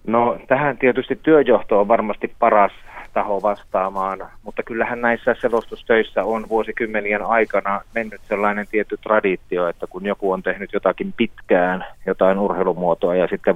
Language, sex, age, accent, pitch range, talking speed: Finnish, male, 30-49, native, 95-110 Hz, 135 wpm